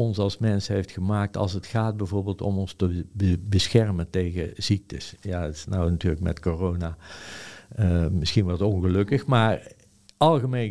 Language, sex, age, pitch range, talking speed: Dutch, male, 50-69, 95-115 Hz, 165 wpm